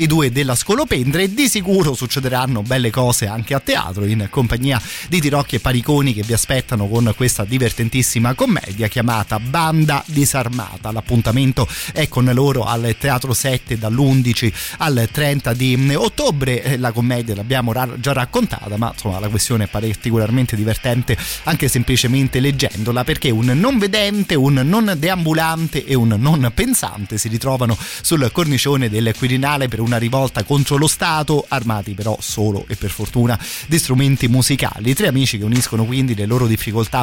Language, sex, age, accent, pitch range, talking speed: Italian, male, 30-49, native, 115-145 Hz, 160 wpm